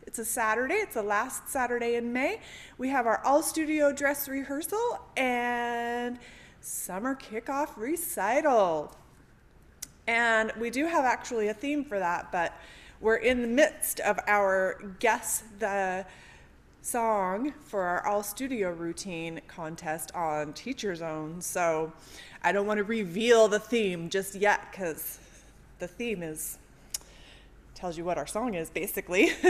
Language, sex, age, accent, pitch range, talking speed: English, female, 30-49, American, 205-285 Hz, 135 wpm